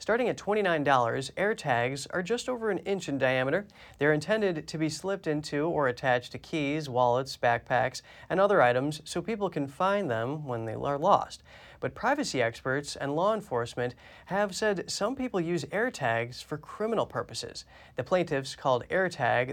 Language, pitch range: English, 135-180 Hz